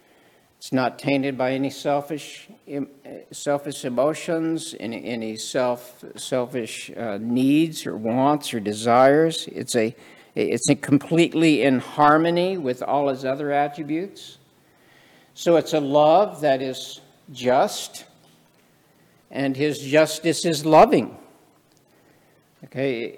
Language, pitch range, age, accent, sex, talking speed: English, 130-155 Hz, 60-79, American, male, 110 wpm